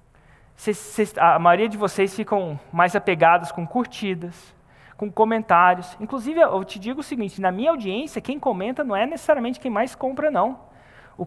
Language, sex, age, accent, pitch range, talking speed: Portuguese, male, 20-39, Brazilian, 150-235 Hz, 160 wpm